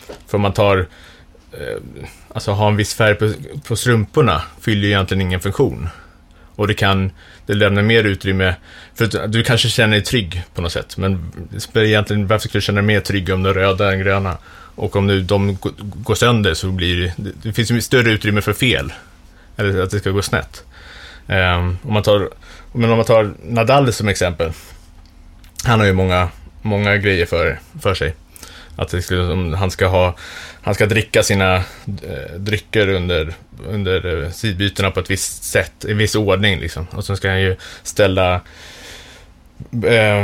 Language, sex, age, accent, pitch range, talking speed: English, male, 30-49, Norwegian, 90-105 Hz, 165 wpm